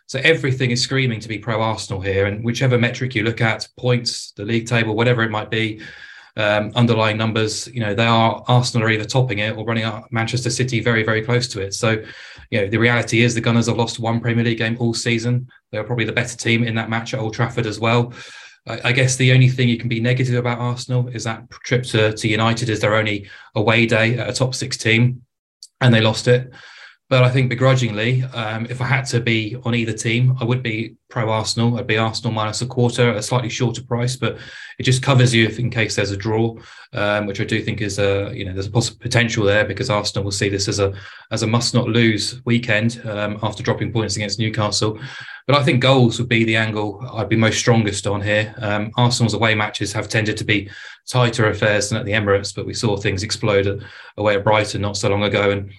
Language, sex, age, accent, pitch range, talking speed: English, male, 20-39, British, 110-120 Hz, 240 wpm